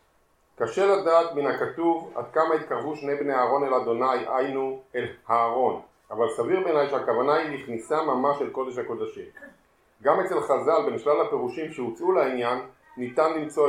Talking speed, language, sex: 150 wpm, Hebrew, male